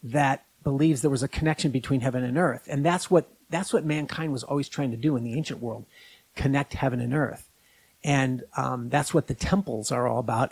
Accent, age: American, 50-69